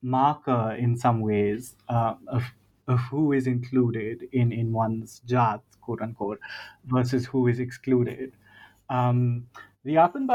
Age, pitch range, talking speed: 30-49, 120-130 Hz, 135 wpm